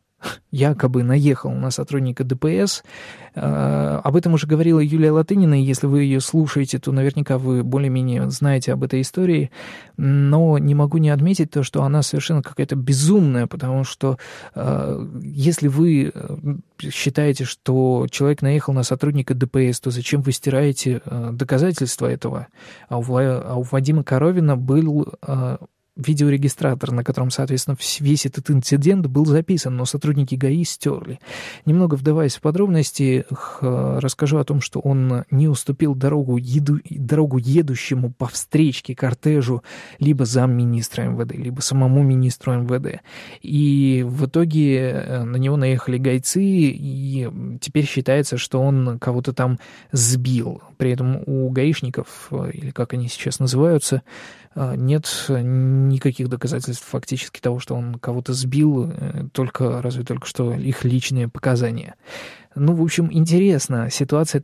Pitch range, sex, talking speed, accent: 130-150 Hz, male, 135 wpm, native